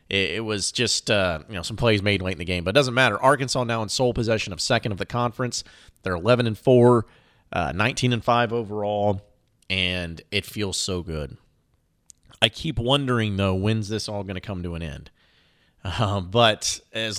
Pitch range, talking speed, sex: 100-125 Hz, 190 wpm, male